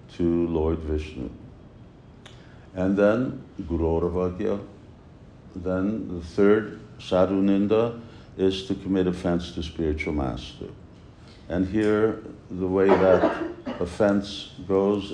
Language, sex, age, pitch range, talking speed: English, male, 60-79, 80-100 Hz, 100 wpm